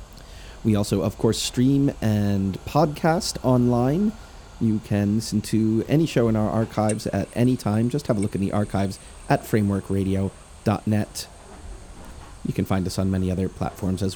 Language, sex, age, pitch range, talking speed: English, male, 30-49, 90-110 Hz, 160 wpm